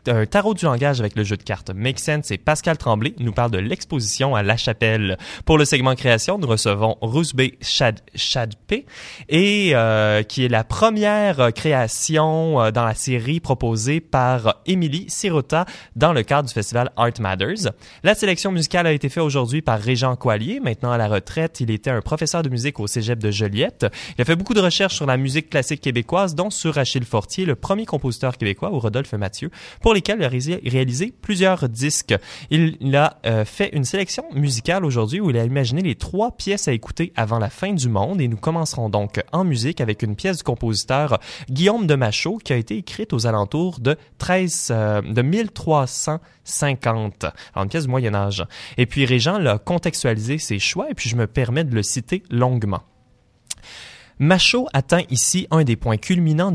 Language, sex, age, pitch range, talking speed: French, male, 20-39, 115-160 Hz, 190 wpm